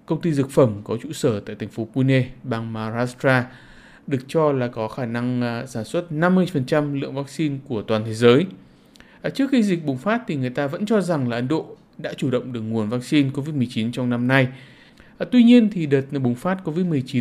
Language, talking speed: Vietnamese, 205 wpm